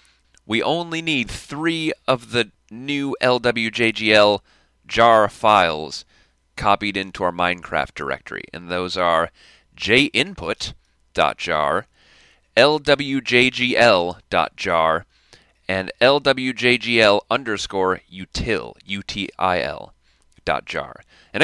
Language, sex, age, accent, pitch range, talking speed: English, male, 30-49, American, 90-120 Hz, 70 wpm